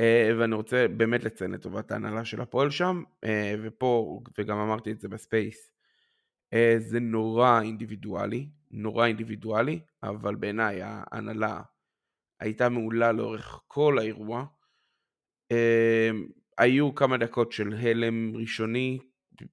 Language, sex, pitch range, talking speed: Hebrew, male, 110-135 Hz, 120 wpm